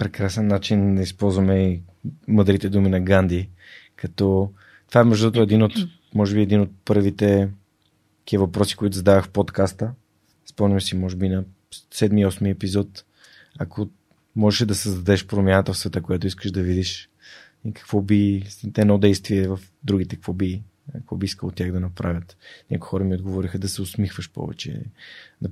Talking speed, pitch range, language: 155 wpm, 95-105 Hz, Bulgarian